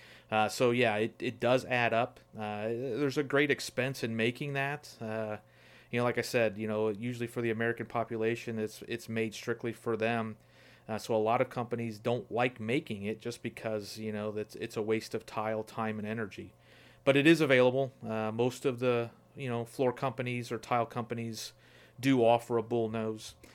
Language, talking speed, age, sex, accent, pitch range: English, 195 wpm, 30-49, male, American, 105-120 Hz